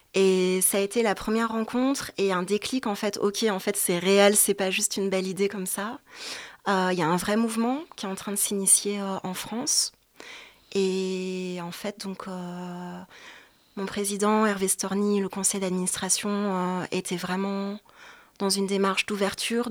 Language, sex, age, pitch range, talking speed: French, female, 20-39, 190-220 Hz, 185 wpm